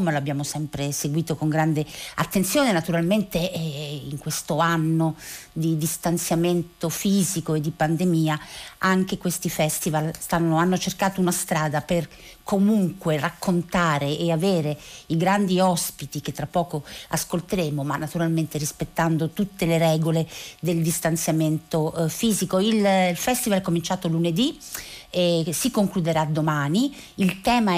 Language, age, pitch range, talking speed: Italian, 50-69, 160-200 Hz, 125 wpm